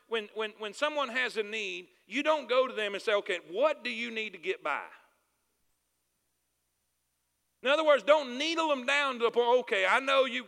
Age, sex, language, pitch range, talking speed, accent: 50-69, male, English, 220-295 Hz, 205 wpm, American